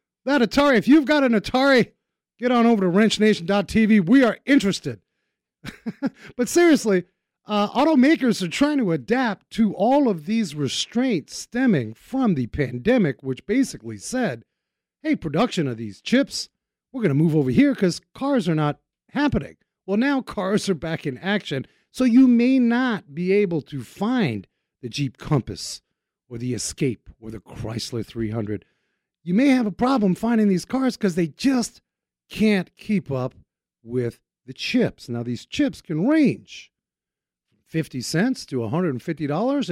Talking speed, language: 155 wpm, English